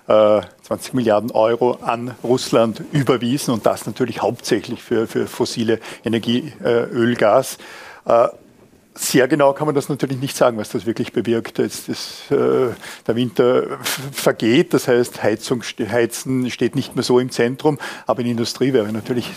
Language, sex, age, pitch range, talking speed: German, male, 50-69, 115-130 Hz, 165 wpm